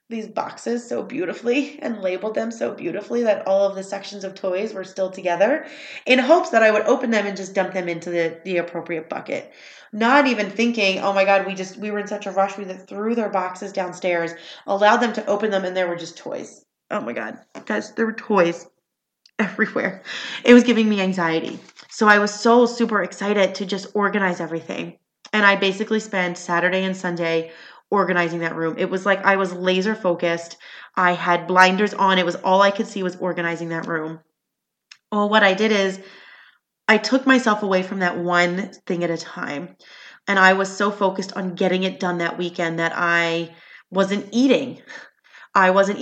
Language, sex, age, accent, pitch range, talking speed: English, female, 30-49, American, 180-215 Hz, 195 wpm